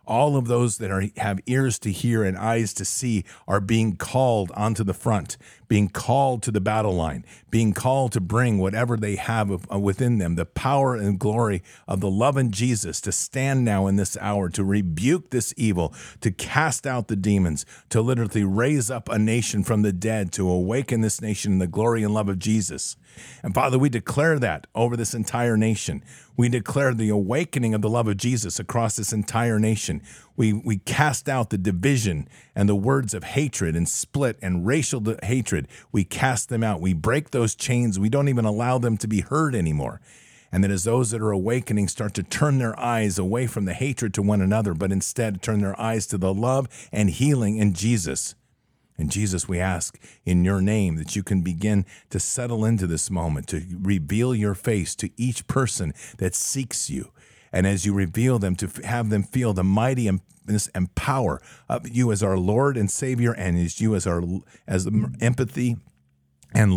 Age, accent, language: 50-69, American, English